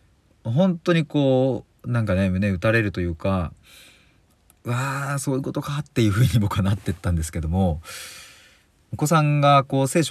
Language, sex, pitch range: Japanese, male, 95-140 Hz